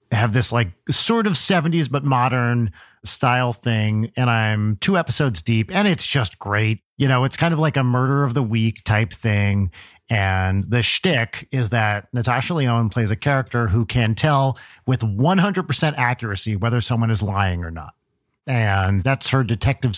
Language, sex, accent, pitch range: English, male, American, 100-130 Hz